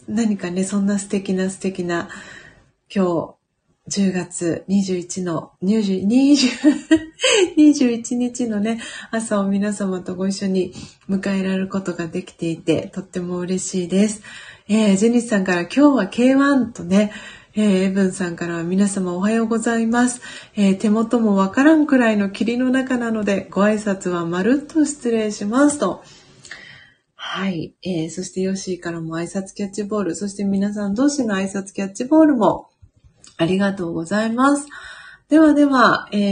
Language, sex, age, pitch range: Japanese, female, 30-49, 190-250 Hz